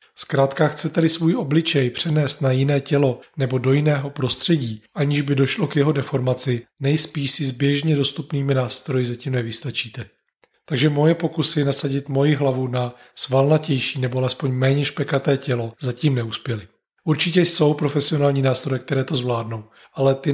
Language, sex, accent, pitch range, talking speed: Czech, male, native, 130-145 Hz, 150 wpm